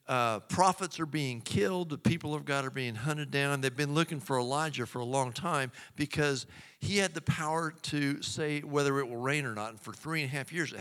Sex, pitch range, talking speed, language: male, 125-150 Hz, 240 wpm, English